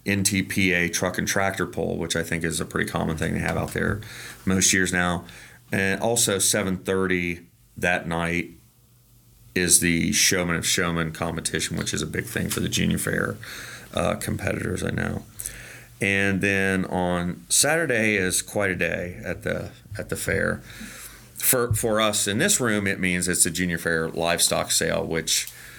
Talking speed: 170 wpm